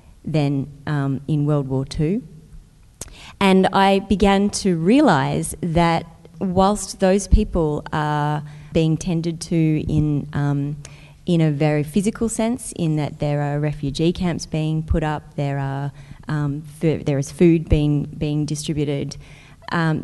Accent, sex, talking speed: Australian, female, 140 wpm